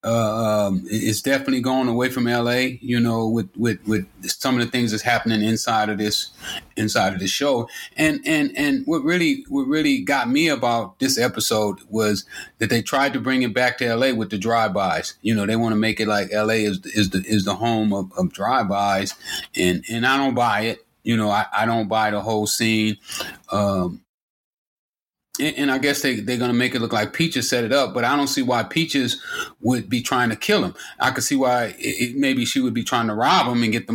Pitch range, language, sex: 110-135 Hz, English, male